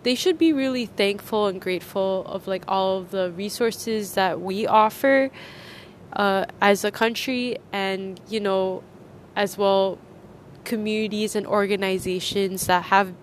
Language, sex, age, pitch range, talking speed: English, female, 10-29, 190-215 Hz, 135 wpm